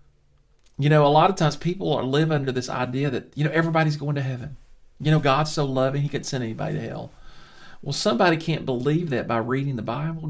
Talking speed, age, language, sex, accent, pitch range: 220 wpm, 40-59, English, male, American, 145-185 Hz